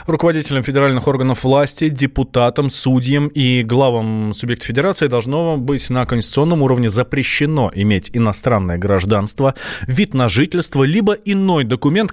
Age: 20-39